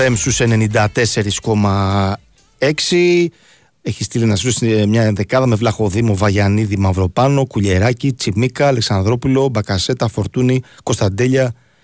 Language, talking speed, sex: Greek, 90 wpm, male